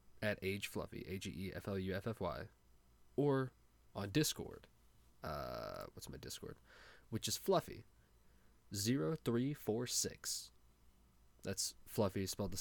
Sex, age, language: male, 20-39, English